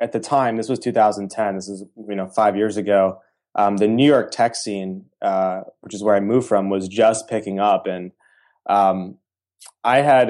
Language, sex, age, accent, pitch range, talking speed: English, male, 20-39, American, 100-115 Hz, 200 wpm